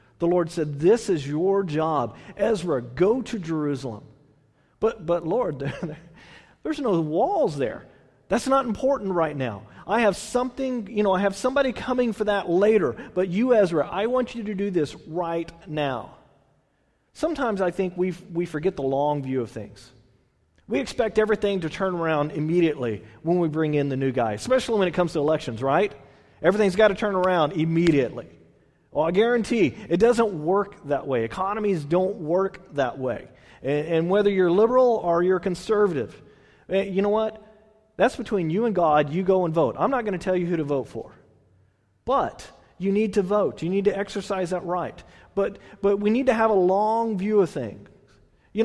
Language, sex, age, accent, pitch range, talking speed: English, male, 40-59, American, 155-215 Hz, 185 wpm